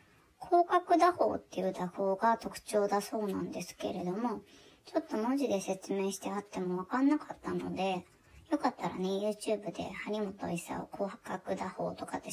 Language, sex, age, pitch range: Japanese, male, 20-39, 200-290 Hz